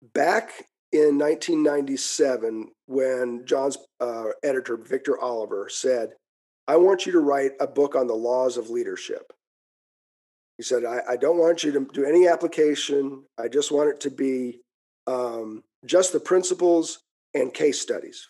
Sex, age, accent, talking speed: male, 40-59, American, 150 wpm